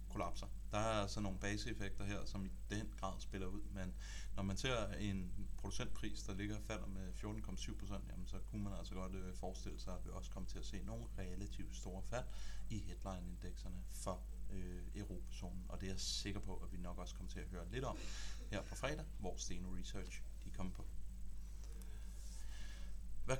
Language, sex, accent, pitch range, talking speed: Danish, male, native, 95-110 Hz, 190 wpm